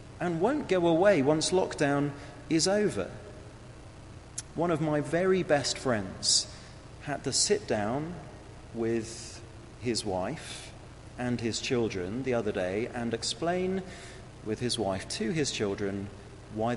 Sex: male